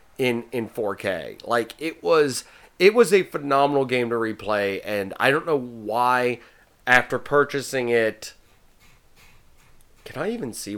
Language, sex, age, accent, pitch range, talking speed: English, male, 30-49, American, 105-140 Hz, 140 wpm